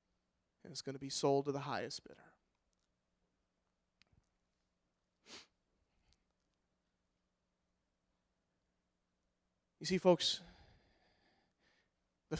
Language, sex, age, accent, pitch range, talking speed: English, male, 40-59, American, 125-165 Hz, 70 wpm